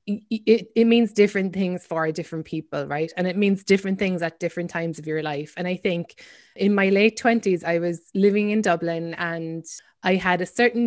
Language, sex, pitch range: English, female, 175-210 Hz